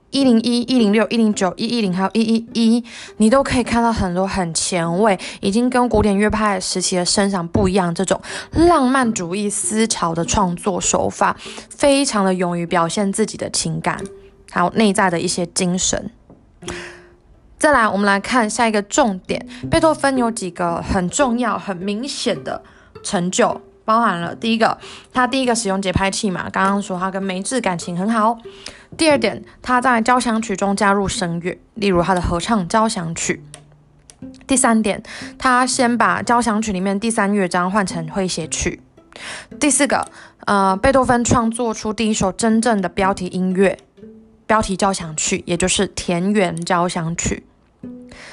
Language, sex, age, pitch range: Chinese, female, 20-39, 185-235 Hz